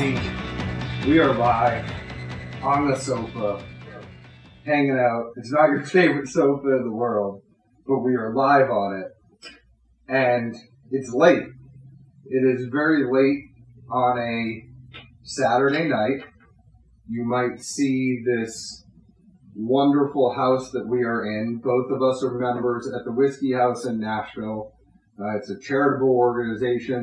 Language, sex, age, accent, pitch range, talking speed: English, male, 30-49, American, 110-130 Hz, 130 wpm